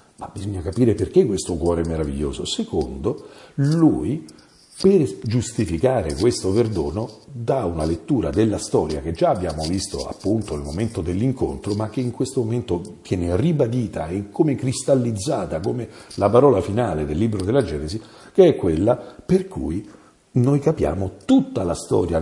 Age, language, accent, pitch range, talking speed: 50-69, Italian, native, 90-135 Hz, 150 wpm